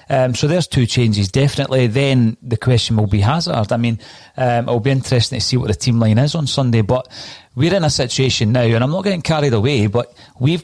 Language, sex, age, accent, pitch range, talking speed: English, male, 40-59, British, 110-135 Hz, 230 wpm